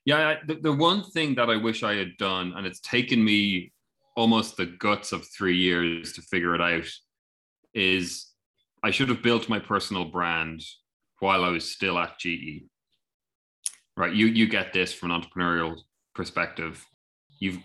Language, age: English, 30-49